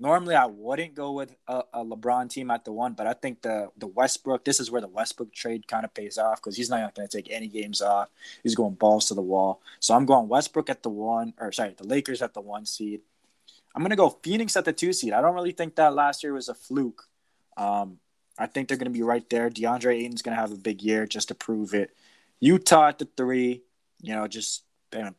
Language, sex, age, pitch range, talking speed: English, male, 20-39, 110-130 Hz, 250 wpm